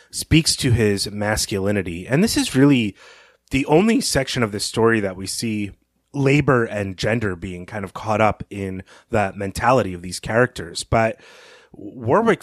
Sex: male